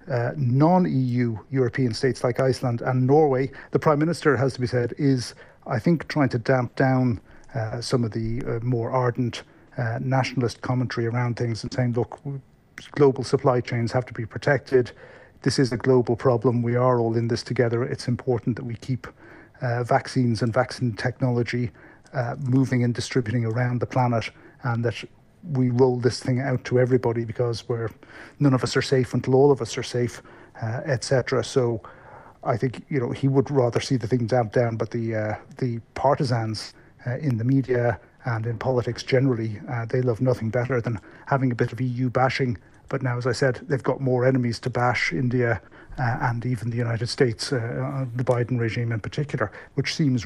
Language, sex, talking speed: English, male, 190 wpm